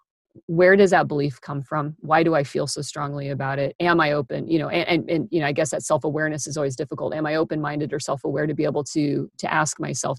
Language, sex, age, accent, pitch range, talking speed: English, female, 40-59, American, 145-160 Hz, 270 wpm